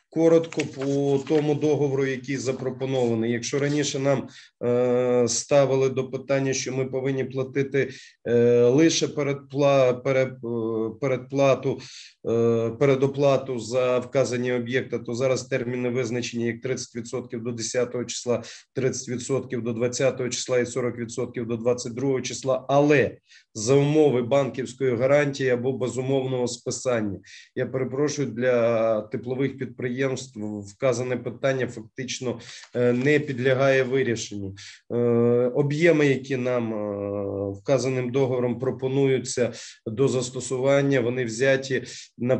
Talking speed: 105 wpm